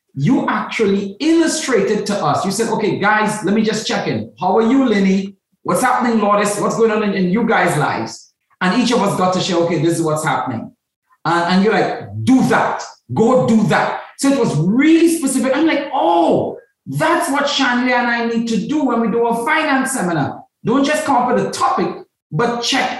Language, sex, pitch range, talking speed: English, male, 165-235 Hz, 210 wpm